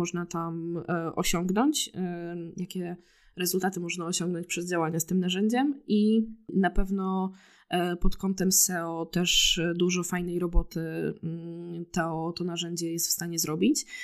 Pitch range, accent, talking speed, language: 170-190 Hz, native, 125 wpm, Polish